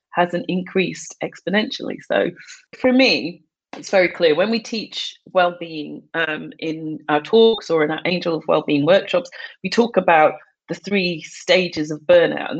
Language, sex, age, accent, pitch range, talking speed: English, female, 40-59, British, 160-200 Hz, 155 wpm